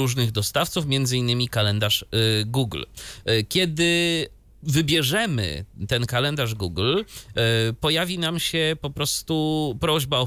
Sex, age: male, 30-49